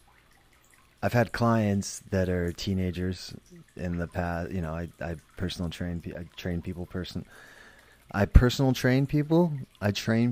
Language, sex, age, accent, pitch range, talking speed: English, male, 30-49, American, 90-120 Hz, 145 wpm